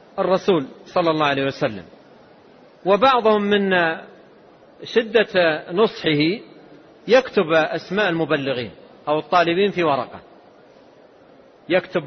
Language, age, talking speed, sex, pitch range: Arabic, 40-59, 85 wpm, male, 170-225 Hz